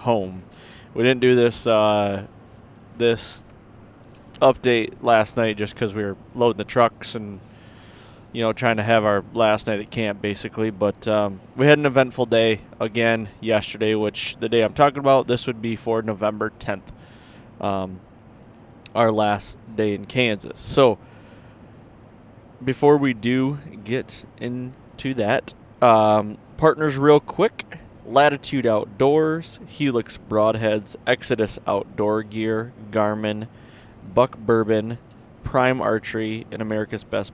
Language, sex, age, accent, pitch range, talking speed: English, male, 20-39, American, 105-120 Hz, 130 wpm